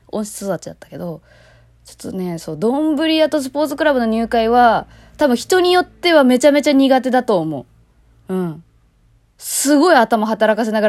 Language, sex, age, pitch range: Japanese, female, 20-39, 180-295 Hz